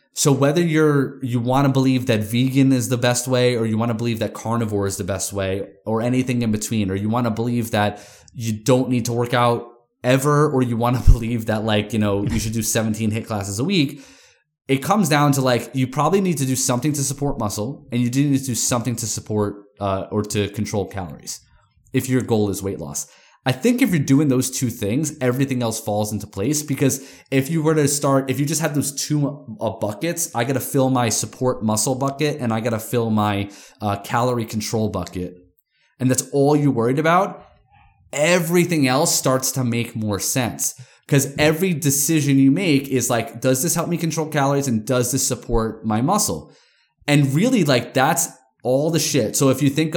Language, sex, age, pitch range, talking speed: English, male, 20-39, 110-140 Hz, 215 wpm